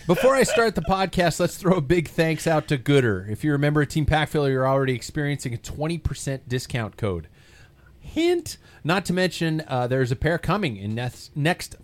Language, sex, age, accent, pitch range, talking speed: English, male, 30-49, American, 115-160 Hz, 205 wpm